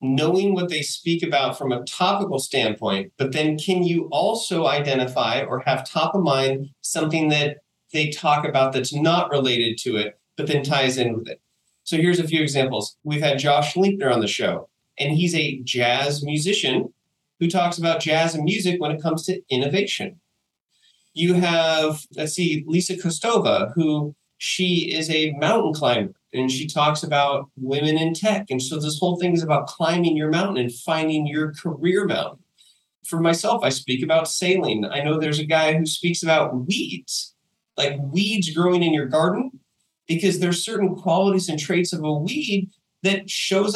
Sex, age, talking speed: male, 30-49, 180 wpm